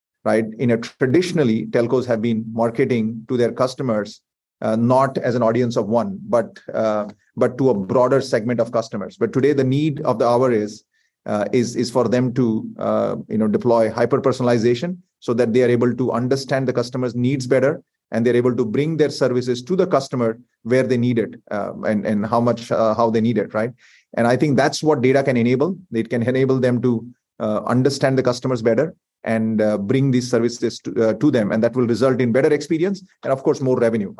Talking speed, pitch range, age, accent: 215 wpm, 115-135 Hz, 30-49, Indian